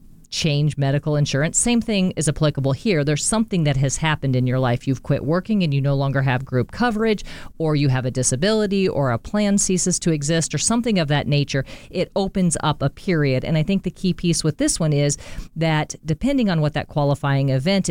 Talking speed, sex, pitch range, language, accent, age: 215 wpm, female, 135-170 Hz, English, American, 40-59